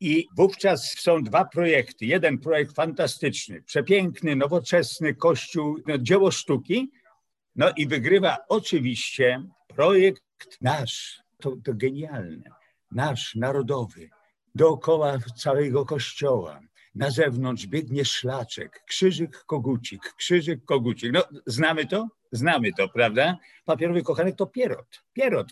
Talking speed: 110 wpm